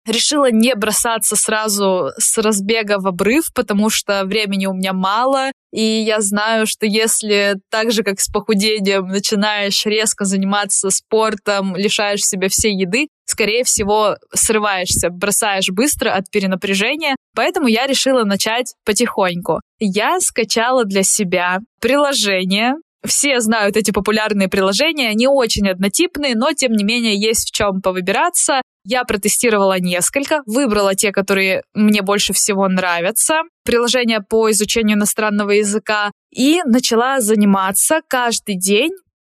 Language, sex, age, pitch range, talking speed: Russian, female, 20-39, 195-240 Hz, 130 wpm